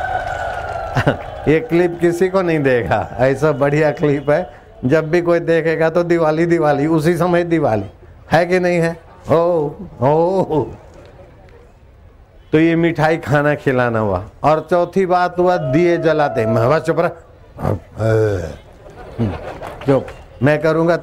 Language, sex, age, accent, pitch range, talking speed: Hindi, male, 60-79, native, 120-165 Hz, 125 wpm